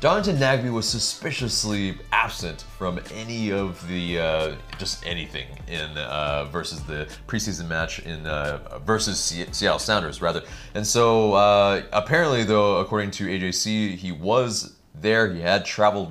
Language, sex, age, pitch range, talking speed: English, male, 30-49, 85-110 Hz, 140 wpm